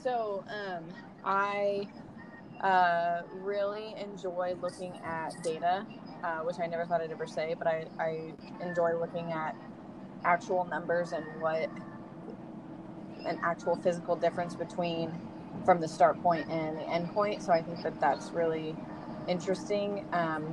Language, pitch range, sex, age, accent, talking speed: English, 165-185 Hz, female, 20-39, American, 140 wpm